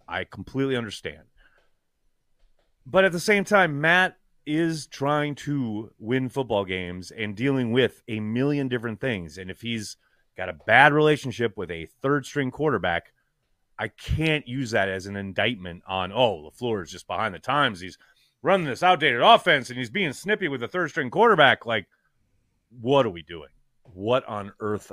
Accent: American